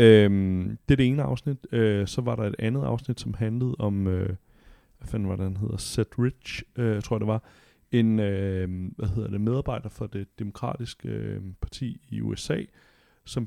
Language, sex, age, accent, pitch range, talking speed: Danish, male, 30-49, native, 105-115 Hz, 160 wpm